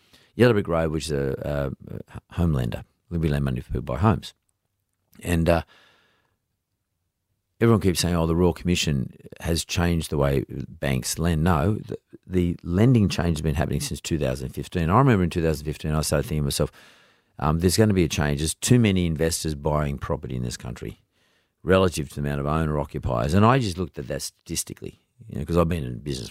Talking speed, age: 205 wpm, 50-69